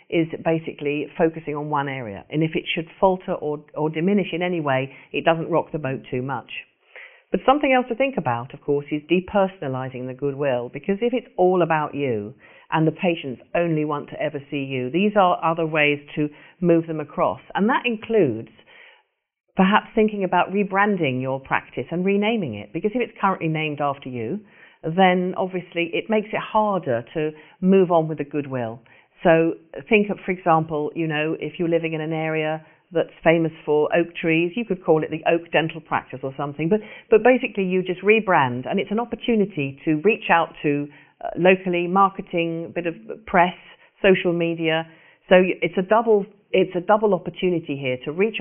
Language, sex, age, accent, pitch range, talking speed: English, female, 50-69, British, 145-190 Hz, 185 wpm